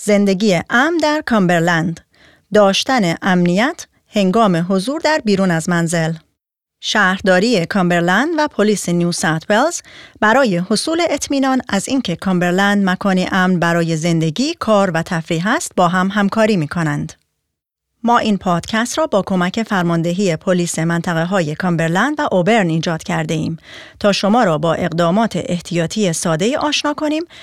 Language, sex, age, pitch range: Persian, female, 30-49, 175-245 Hz